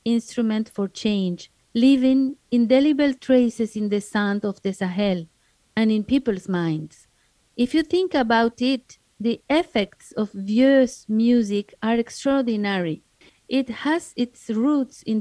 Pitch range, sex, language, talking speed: 215-260 Hz, female, English, 130 wpm